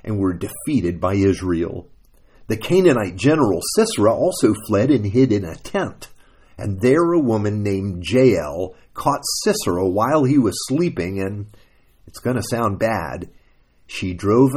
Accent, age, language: American, 50-69, English